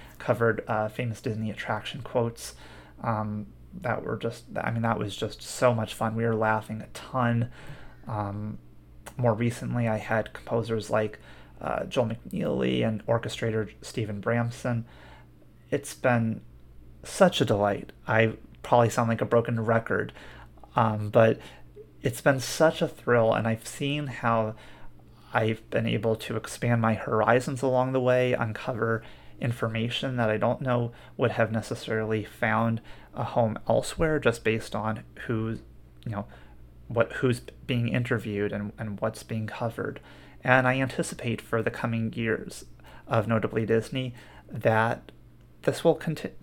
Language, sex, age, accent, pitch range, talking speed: English, male, 30-49, American, 110-125 Hz, 145 wpm